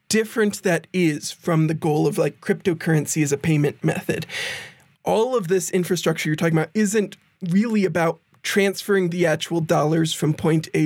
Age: 20-39